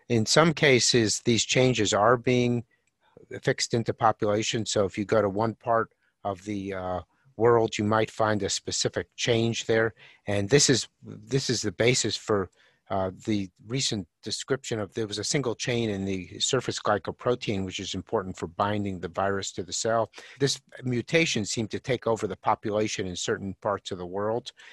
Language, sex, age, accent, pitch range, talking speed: English, male, 50-69, American, 100-120 Hz, 180 wpm